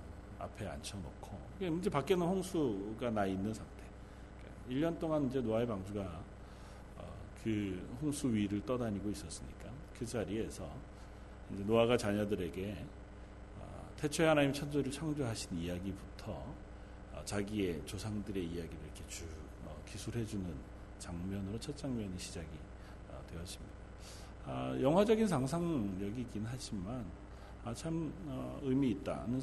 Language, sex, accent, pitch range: Korean, male, native, 100-135 Hz